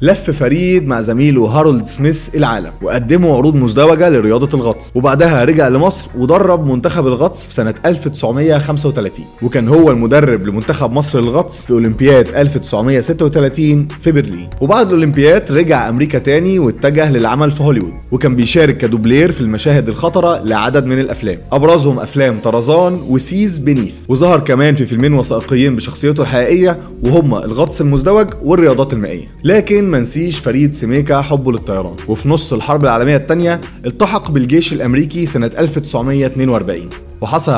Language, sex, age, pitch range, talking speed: Arabic, male, 30-49, 120-160 Hz, 135 wpm